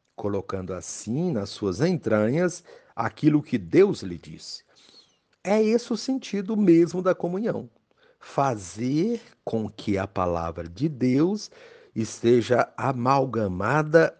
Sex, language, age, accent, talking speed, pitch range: male, Portuguese, 60-79, Brazilian, 110 wpm, 110-170 Hz